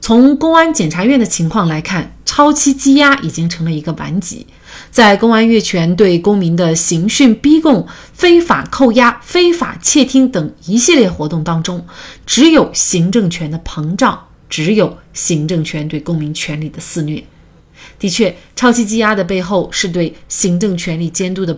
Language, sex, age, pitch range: Chinese, female, 30-49, 165-240 Hz